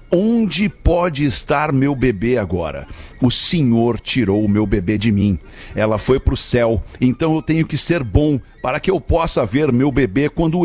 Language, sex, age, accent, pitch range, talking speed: Portuguese, male, 60-79, Brazilian, 105-135 Hz, 185 wpm